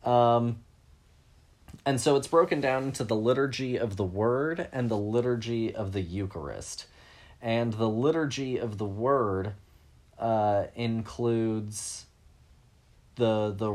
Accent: American